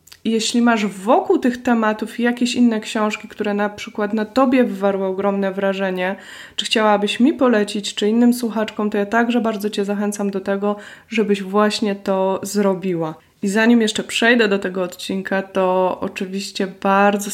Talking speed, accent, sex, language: 155 wpm, native, female, Polish